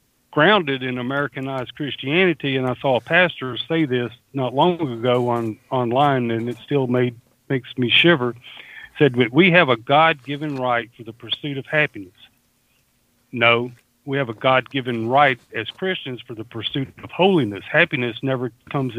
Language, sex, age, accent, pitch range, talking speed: English, male, 50-69, American, 120-150 Hz, 165 wpm